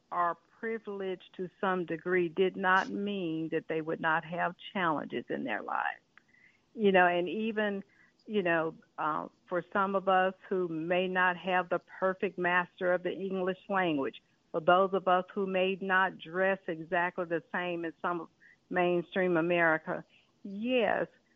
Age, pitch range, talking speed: 60-79, 180-225 Hz, 155 wpm